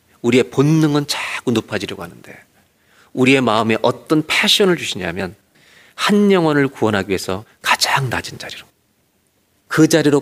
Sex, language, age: male, Korean, 40-59